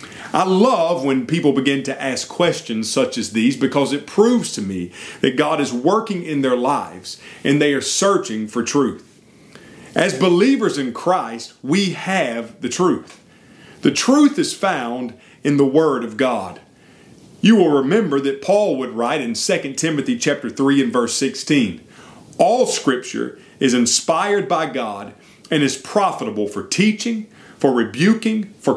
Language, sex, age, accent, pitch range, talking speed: English, male, 40-59, American, 125-195 Hz, 155 wpm